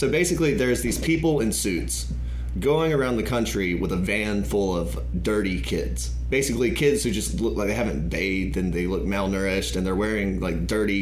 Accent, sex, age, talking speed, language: American, male, 30-49, 195 wpm, English